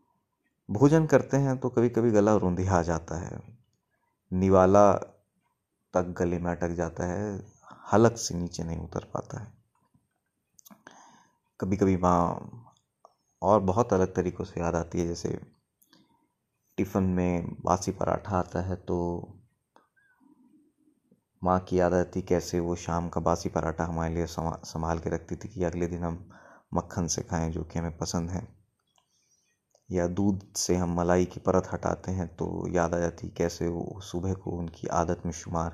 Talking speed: 155 wpm